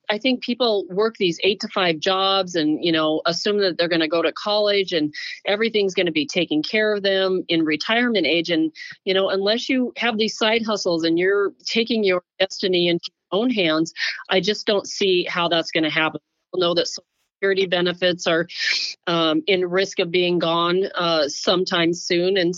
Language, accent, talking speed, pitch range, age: English, American, 200 wpm, 170-210 Hz, 40-59